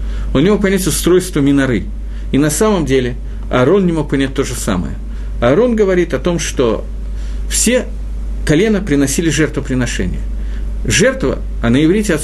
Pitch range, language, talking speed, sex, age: 125-185 Hz, Russian, 145 wpm, male, 50-69